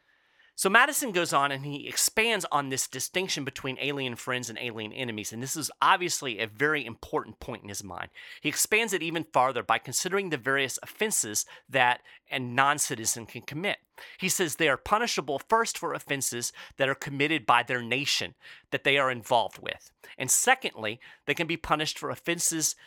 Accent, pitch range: American, 130-185 Hz